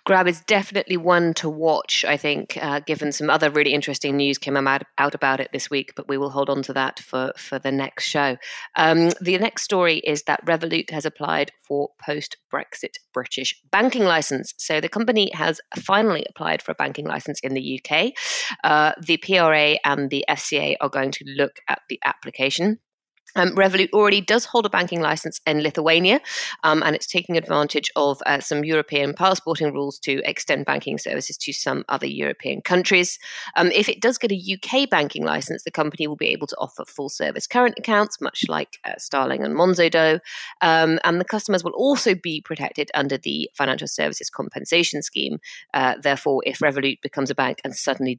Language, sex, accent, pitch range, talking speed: English, female, British, 140-185 Hz, 190 wpm